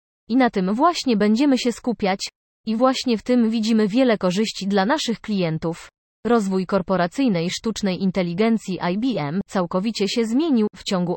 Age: 30-49